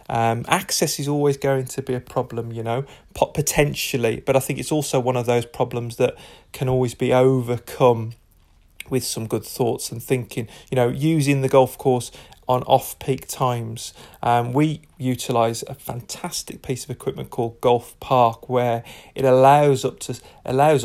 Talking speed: 160 wpm